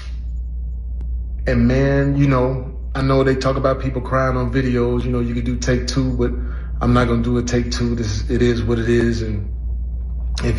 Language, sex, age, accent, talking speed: English, male, 30-49, American, 205 wpm